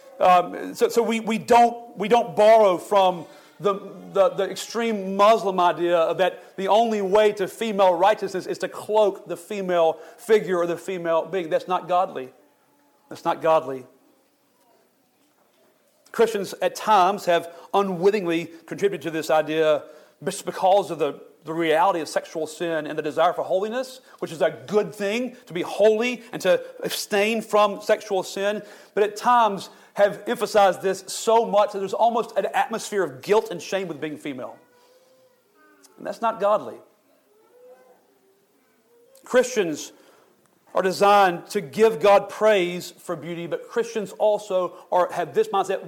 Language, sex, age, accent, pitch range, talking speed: English, male, 40-59, American, 175-220 Hz, 150 wpm